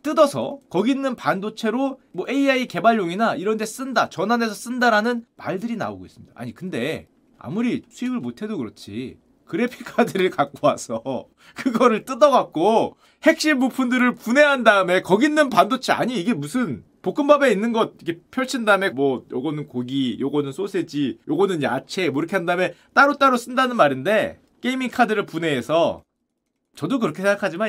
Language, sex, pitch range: Korean, male, 195-265 Hz